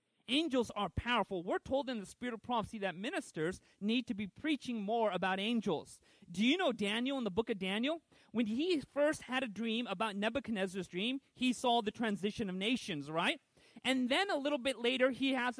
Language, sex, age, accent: English, male, 40-59, American